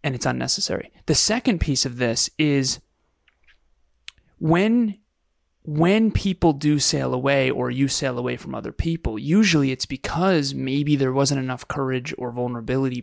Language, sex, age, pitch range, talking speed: English, male, 30-49, 125-155 Hz, 145 wpm